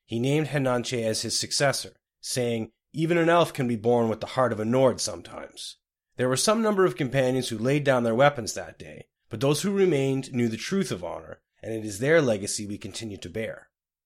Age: 30-49